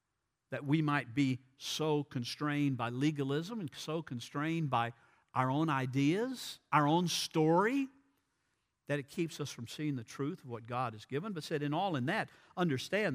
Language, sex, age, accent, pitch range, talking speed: English, male, 50-69, American, 145-225 Hz, 175 wpm